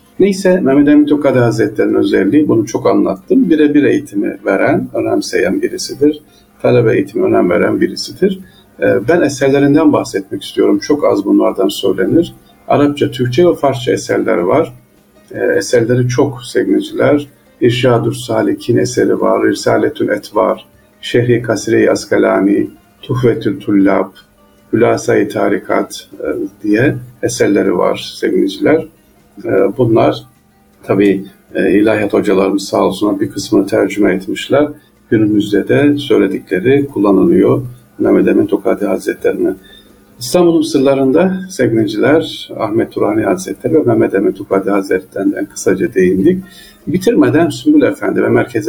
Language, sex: Turkish, male